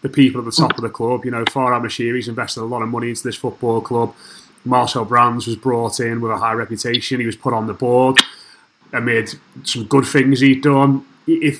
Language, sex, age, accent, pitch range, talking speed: English, male, 30-49, British, 120-140 Hz, 220 wpm